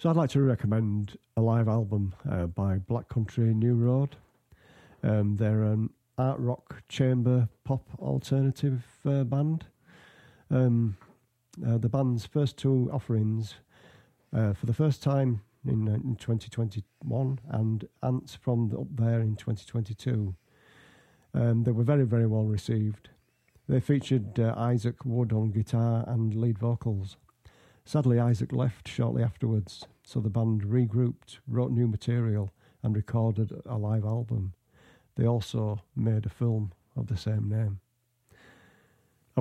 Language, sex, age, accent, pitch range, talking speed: English, male, 50-69, British, 105-125 Hz, 135 wpm